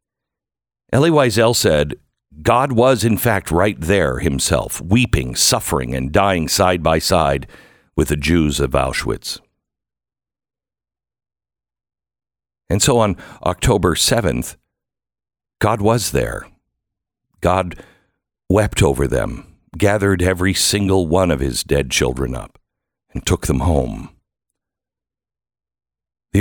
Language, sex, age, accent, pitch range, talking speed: English, male, 60-79, American, 75-105 Hz, 110 wpm